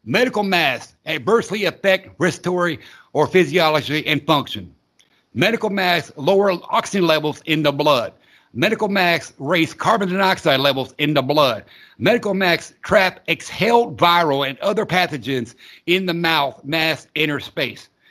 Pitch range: 150-205 Hz